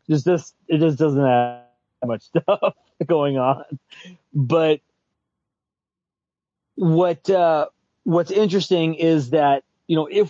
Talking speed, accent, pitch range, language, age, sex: 115 wpm, American, 130-165 Hz, English, 30-49, male